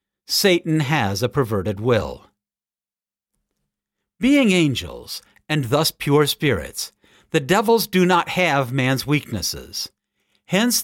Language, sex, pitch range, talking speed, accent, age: English, male, 115-165 Hz, 105 wpm, American, 50-69